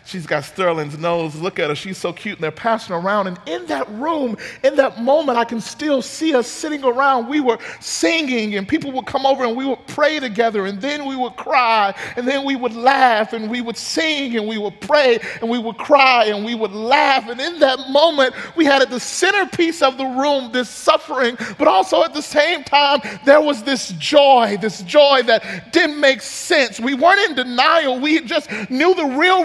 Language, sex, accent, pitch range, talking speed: English, male, American, 245-320 Hz, 215 wpm